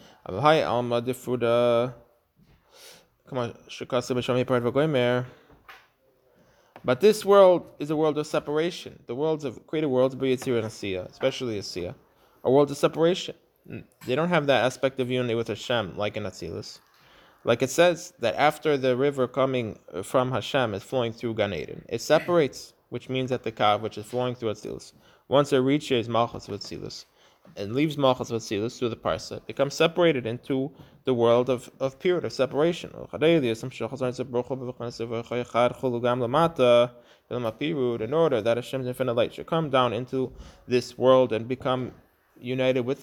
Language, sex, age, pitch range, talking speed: English, male, 20-39, 120-140 Hz, 130 wpm